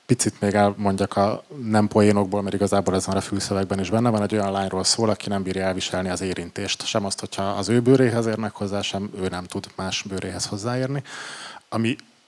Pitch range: 100-110 Hz